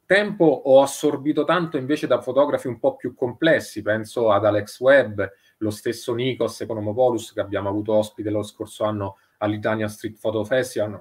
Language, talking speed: Italian, 165 wpm